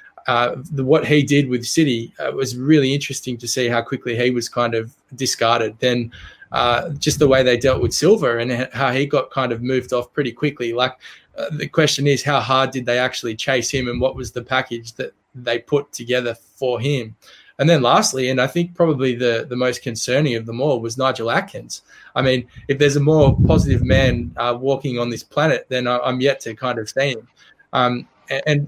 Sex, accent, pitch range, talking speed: male, Australian, 120-145 Hz, 210 wpm